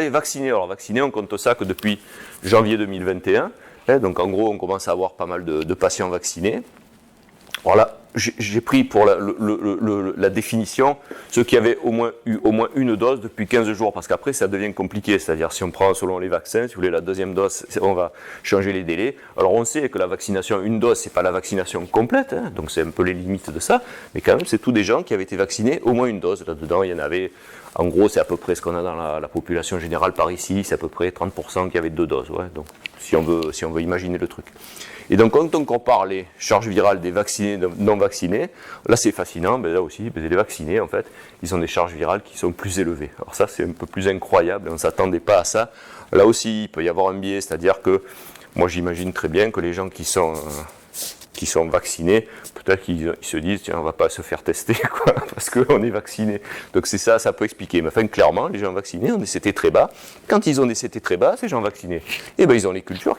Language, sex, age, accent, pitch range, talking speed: French, male, 30-49, French, 95-120 Hz, 255 wpm